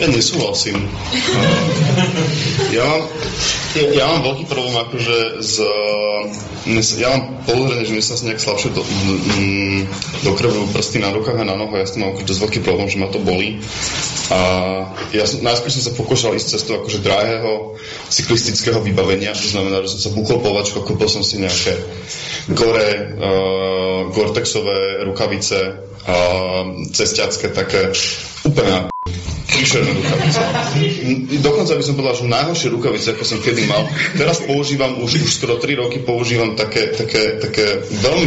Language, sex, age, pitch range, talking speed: Slovak, male, 20-39, 100-135 Hz, 145 wpm